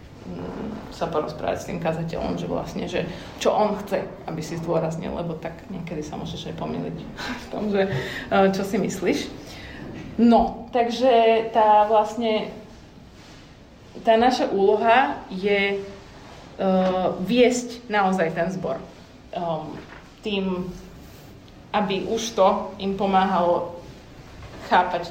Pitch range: 175-210 Hz